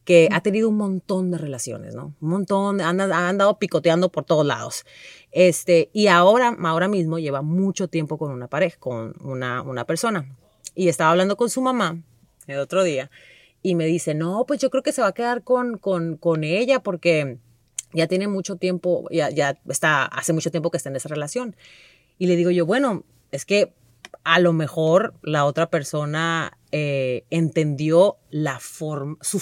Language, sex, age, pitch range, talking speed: Spanish, female, 30-49, 150-190 Hz, 180 wpm